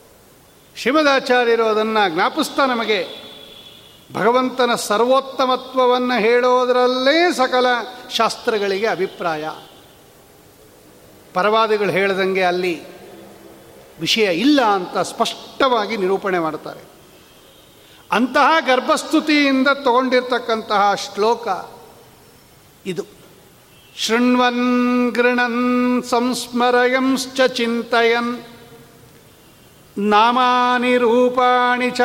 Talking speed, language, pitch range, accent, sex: 55 wpm, Kannada, 215-250 Hz, native, male